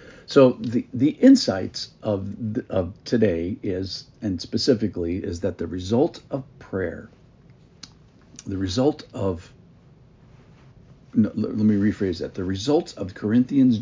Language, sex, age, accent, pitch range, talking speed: English, male, 50-69, American, 105-160 Hz, 125 wpm